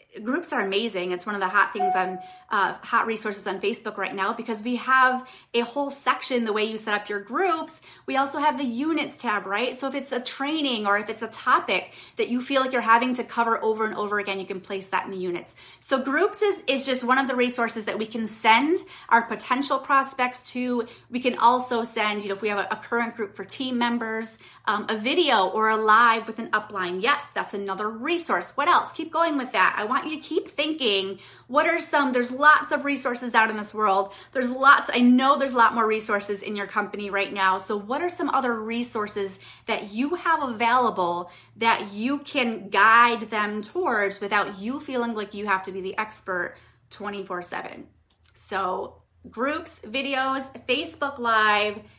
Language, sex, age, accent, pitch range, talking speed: English, female, 30-49, American, 205-260 Hz, 210 wpm